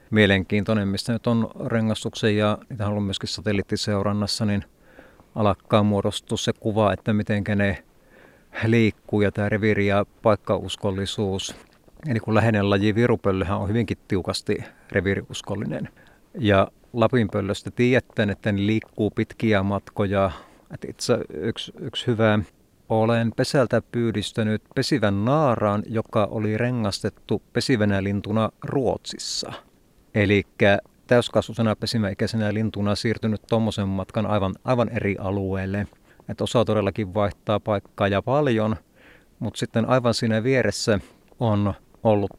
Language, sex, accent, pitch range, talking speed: Finnish, male, native, 100-115 Hz, 115 wpm